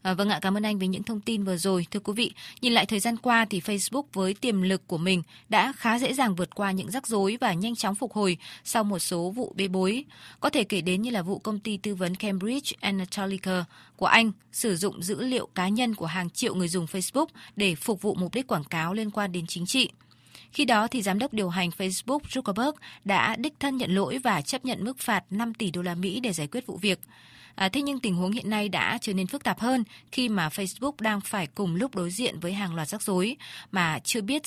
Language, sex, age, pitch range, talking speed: Vietnamese, female, 20-39, 185-235 Hz, 250 wpm